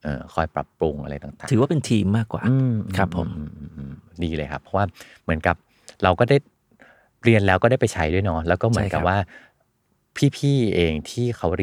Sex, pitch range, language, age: male, 80-110 Hz, Thai, 20-39